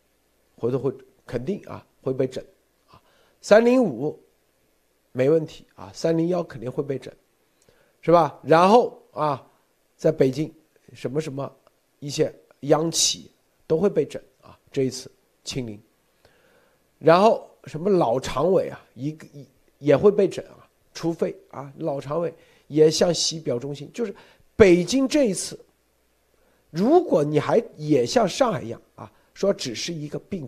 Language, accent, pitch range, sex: Chinese, native, 140-205 Hz, male